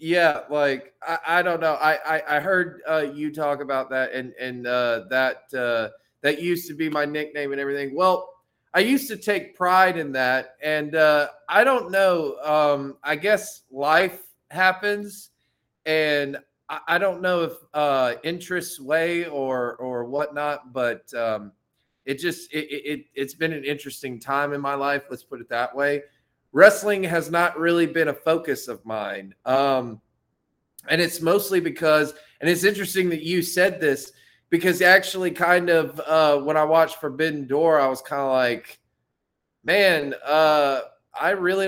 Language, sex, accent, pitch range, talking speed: English, male, American, 135-170 Hz, 170 wpm